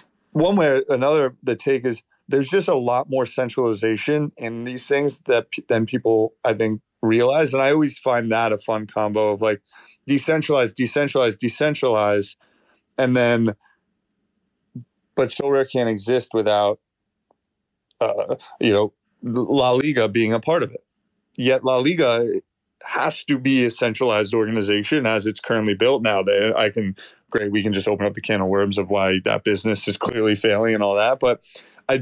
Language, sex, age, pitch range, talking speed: English, male, 30-49, 105-130 Hz, 175 wpm